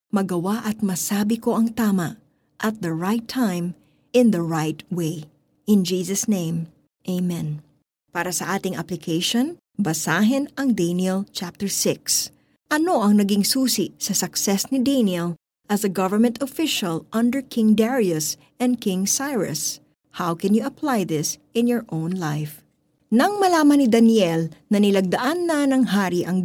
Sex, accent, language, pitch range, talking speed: female, native, Filipino, 170-240 Hz, 145 wpm